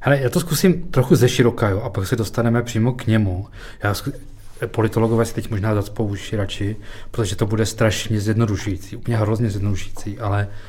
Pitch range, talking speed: 100-115 Hz, 175 wpm